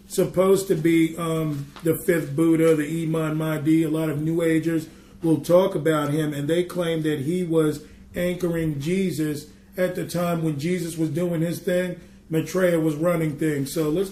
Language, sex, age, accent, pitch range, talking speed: English, male, 40-59, American, 150-180 Hz, 180 wpm